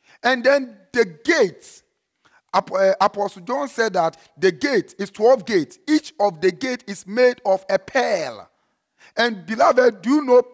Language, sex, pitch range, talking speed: English, male, 190-250 Hz, 155 wpm